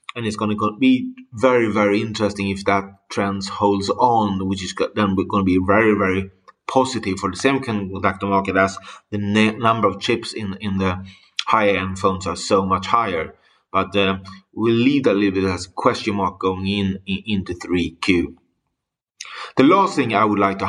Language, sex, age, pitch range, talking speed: English, male, 30-49, 95-110 Hz, 200 wpm